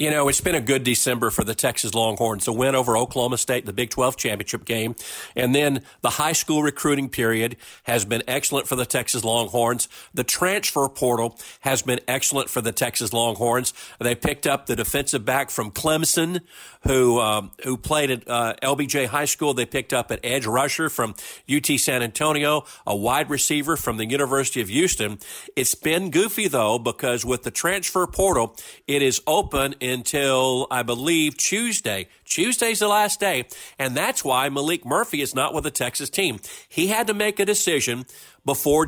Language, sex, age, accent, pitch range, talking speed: English, male, 50-69, American, 120-150 Hz, 185 wpm